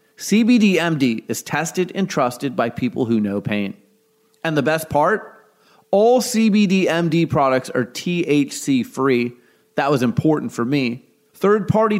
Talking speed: 125 wpm